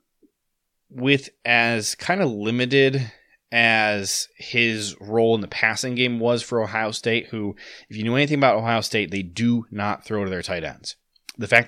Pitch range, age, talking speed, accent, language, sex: 95-115 Hz, 20-39, 175 wpm, American, English, male